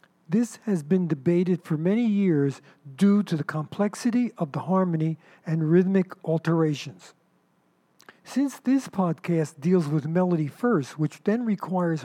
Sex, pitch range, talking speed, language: male, 165-205 Hz, 135 wpm, English